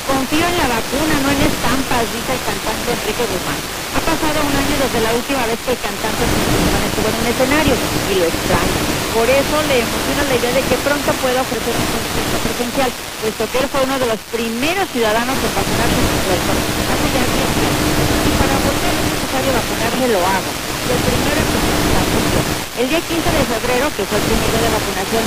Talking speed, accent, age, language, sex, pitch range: 195 wpm, Mexican, 40-59, Spanish, female, 225-275 Hz